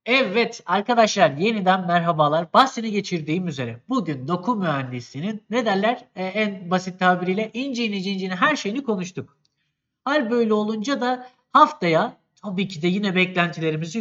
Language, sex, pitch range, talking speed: Turkish, male, 175-230 Hz, 135 wpm